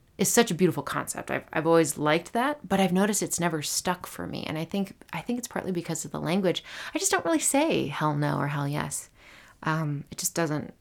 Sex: female